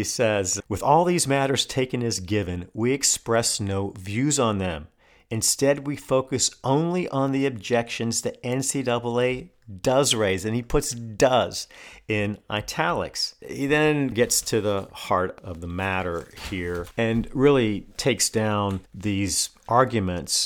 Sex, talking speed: male, 140 wpm